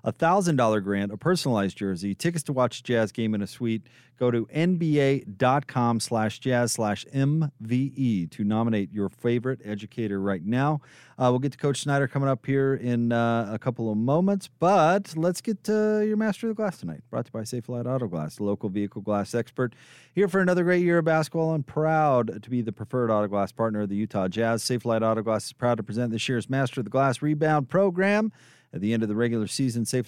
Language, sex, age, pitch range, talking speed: English, male, 30-49, 110-145 Hz, 220 wpm